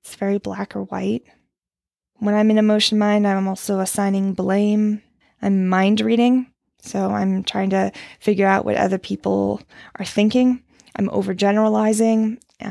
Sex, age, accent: female, 20-39, American